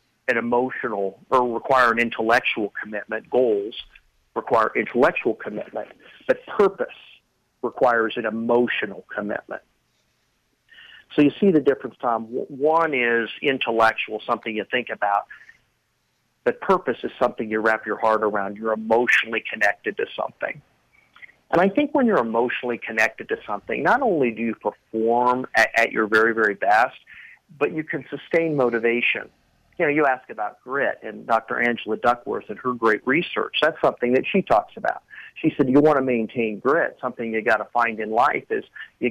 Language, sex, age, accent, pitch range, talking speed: English, male, 50-69, American, 110-140 Hz, 165 wpm